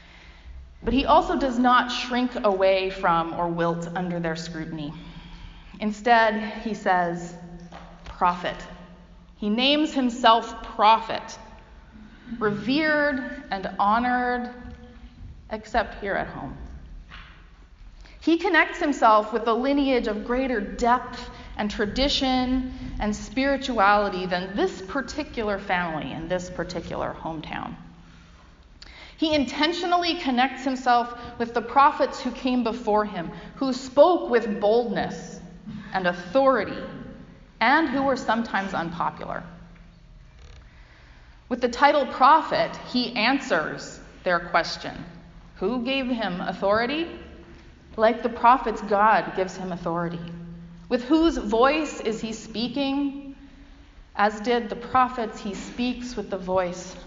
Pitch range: 175-255 Hz